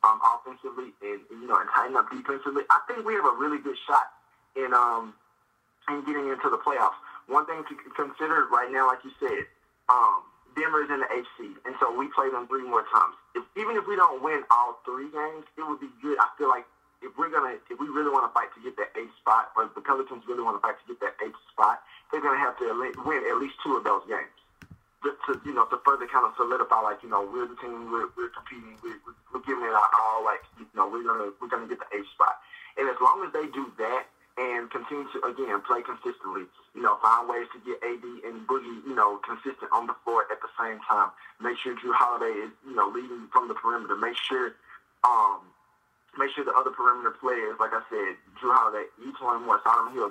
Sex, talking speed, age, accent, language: male, 235 wpm, 30-49, American, English